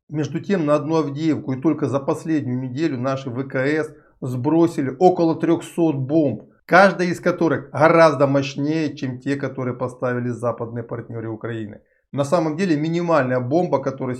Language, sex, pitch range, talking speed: Russian, male, 130-160 Hz, 145 wpm